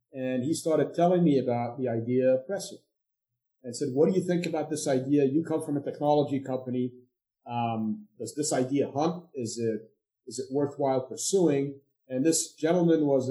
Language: English